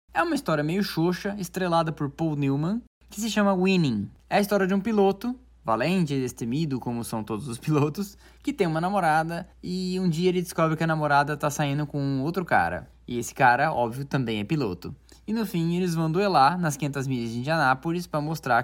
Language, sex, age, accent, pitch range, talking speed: Portuguese, male, 10-29, Brazilian, 135-185 Hz, 205 wpm